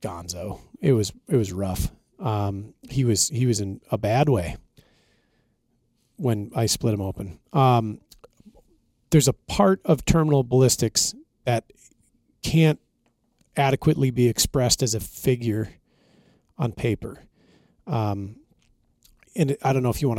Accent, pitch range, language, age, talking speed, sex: American, 115-140 Hz, English, 40-59, 135 wpm, male